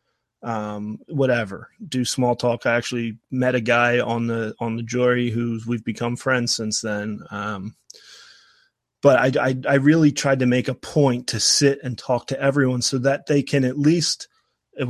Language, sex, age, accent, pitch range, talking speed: English, male, 30-49, American, 110-130 Hz, 180 wpm